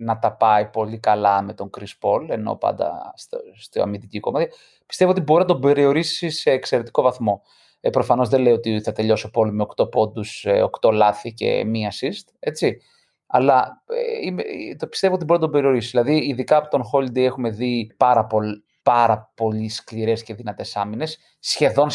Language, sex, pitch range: Greek, male, 115-165 Hz